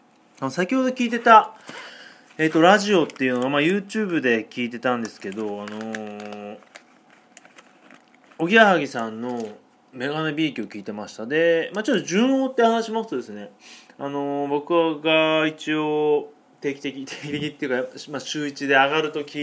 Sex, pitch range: male, 120-185 Hz